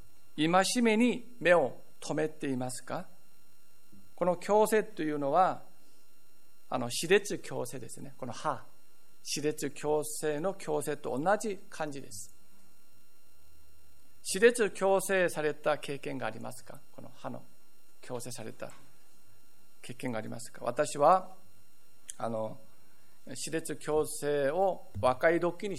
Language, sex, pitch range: Japanese, male, 115-175 Hz